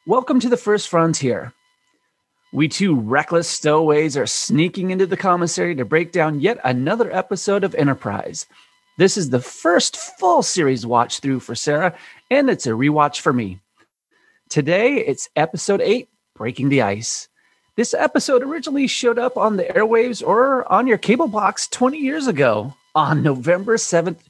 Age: 30-49